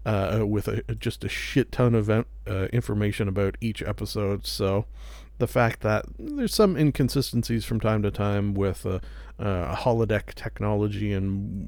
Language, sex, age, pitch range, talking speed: English, male, 40-59, 100-125 Hz, 165 wpm